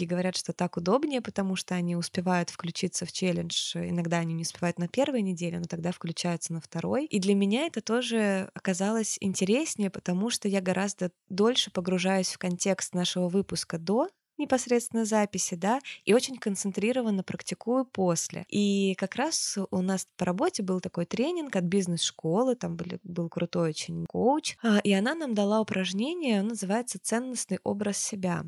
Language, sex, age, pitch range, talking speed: Russian, female, 20-39, 180-215 Hz, 160 wpm